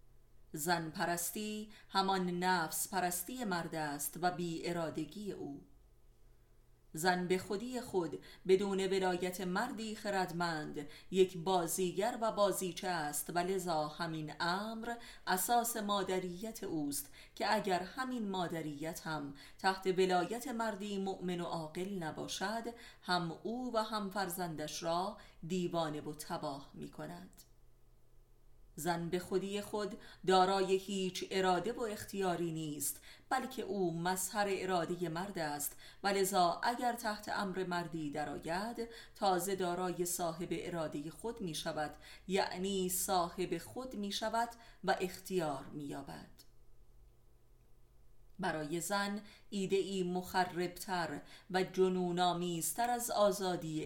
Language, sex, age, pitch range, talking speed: Persian, female, 30-49, 170-200 Hz, 115 wpm